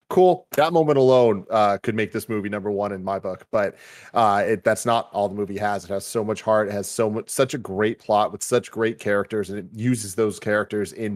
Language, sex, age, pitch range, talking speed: English, male, 30-49, 105-125 Hz, 245 wpm